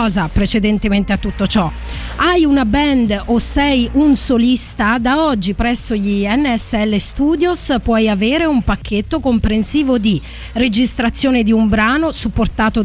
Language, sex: Italian, female